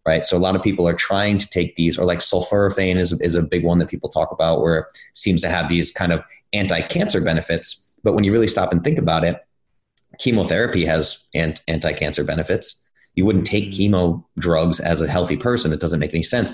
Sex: male